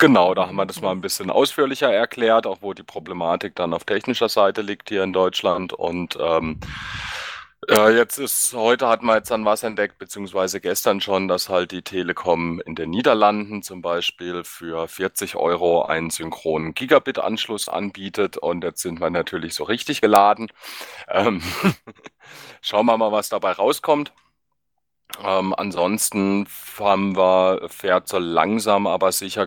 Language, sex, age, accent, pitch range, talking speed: German, male, 30-49, German, 85-105 Hz, 155 wpm